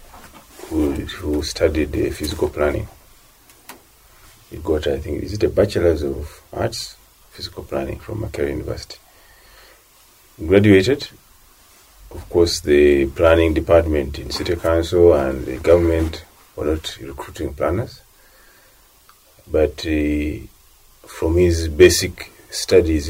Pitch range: 75-85 Hz